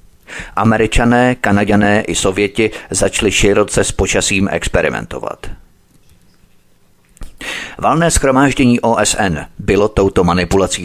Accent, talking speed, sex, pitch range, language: native, 85 wpm, male, 90-110 Hz, Czech